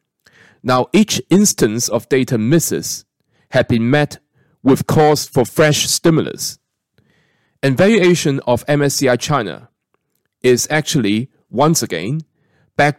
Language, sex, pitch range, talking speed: English, male, 120-155 Hz, 110 wpm